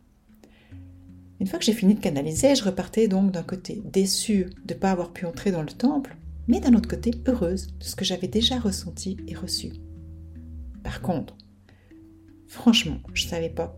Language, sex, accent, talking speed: French, female, French, 185 wpm